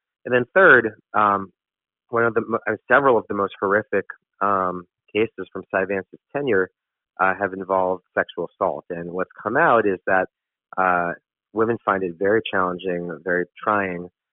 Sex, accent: male, American